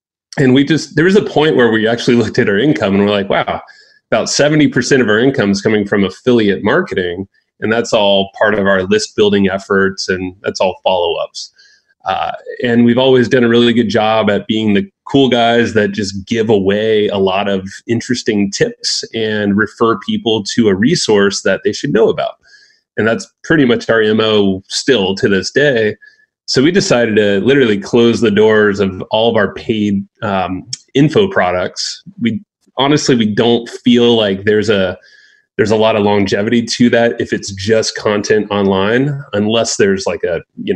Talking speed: 185 wpm